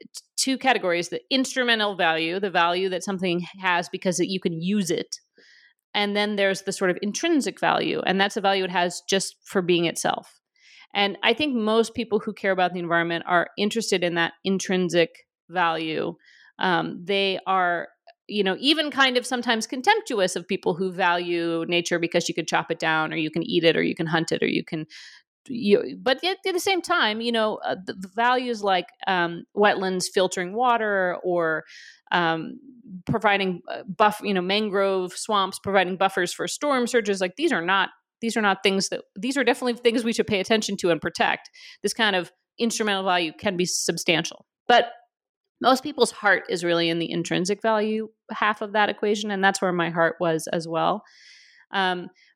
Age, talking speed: 40-59, 185 wpm